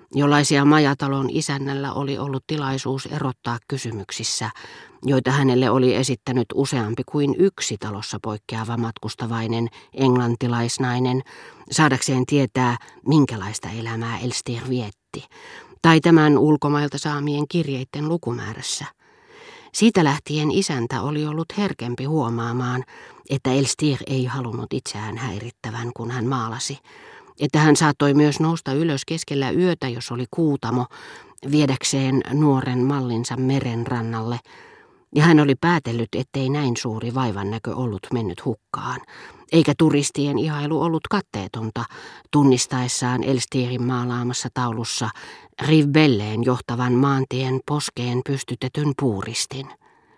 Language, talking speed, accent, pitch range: Finnish, 105 wpm, native, 120-145 Hz